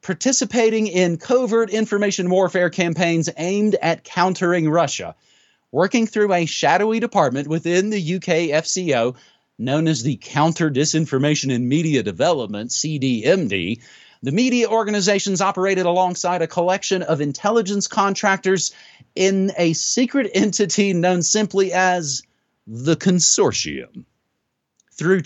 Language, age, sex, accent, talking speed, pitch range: English, 30-49, male, American, 115 wpm, 160-210 Hz